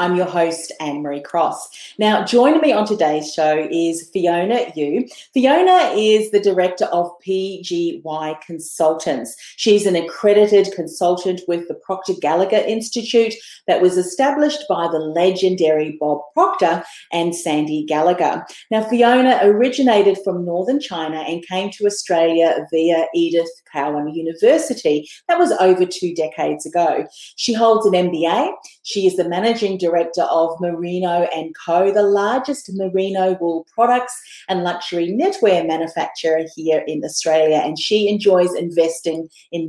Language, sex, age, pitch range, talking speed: English, female, 40-59, 165-230 Hz, 135 wpm